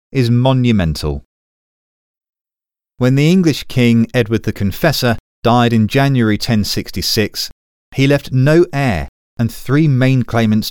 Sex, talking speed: male, 120 wpm